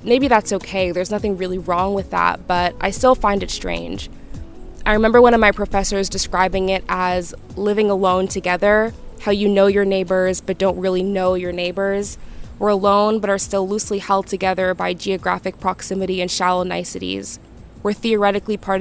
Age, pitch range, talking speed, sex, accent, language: 20-39, 185-205 Hz, 175 wpm, female, American, English